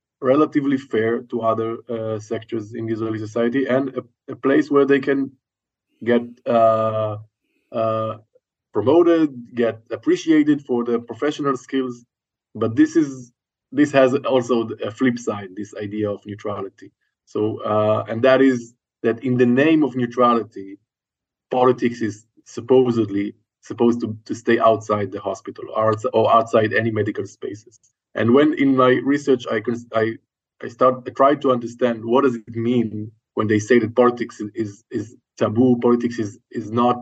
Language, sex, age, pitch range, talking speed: English, male, 20-39, 110-130 Hz, 155 wpm